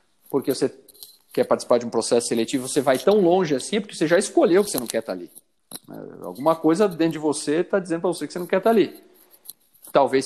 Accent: Brazilian